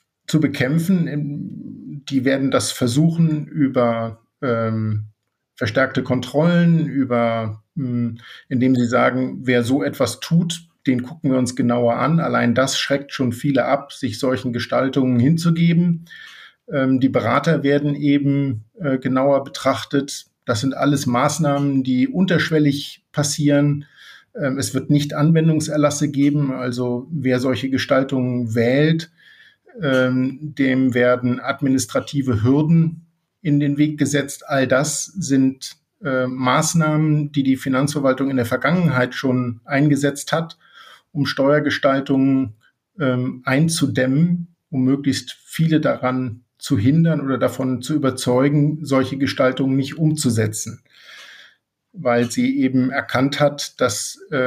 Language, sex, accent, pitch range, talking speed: German, male, German, 130-150 Hz, 115 wpm